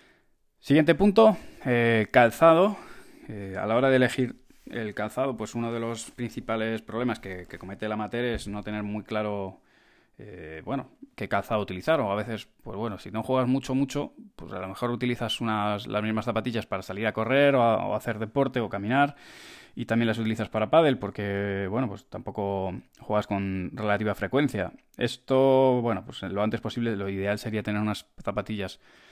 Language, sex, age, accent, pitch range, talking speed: Spanish, male, 20-39, Spanish, 100-120 Hz, 185 wpm